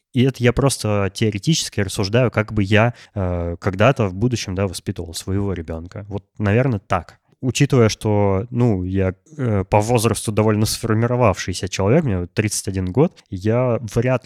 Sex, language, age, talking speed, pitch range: male, Russian, 20-39, 145 wpm, 95-125 Hz